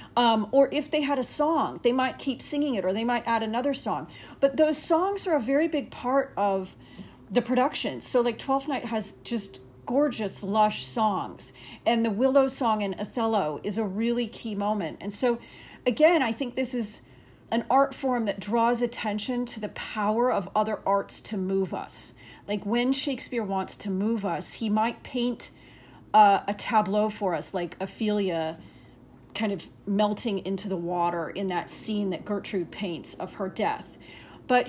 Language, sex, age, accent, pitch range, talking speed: English, female, 40-59, American, 200-255 Hz, 180 wpm